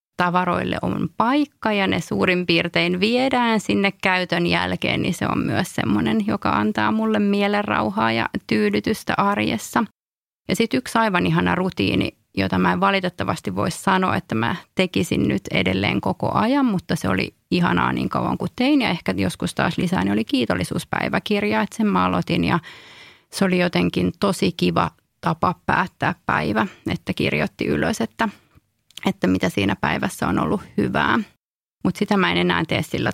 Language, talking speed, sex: Finnish, 160 wpm, female